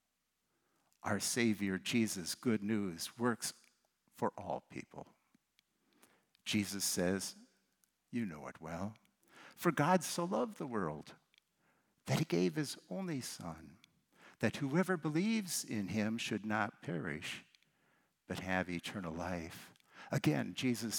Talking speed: 115 wpm